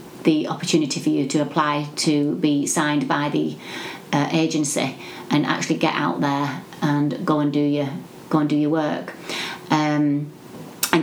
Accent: British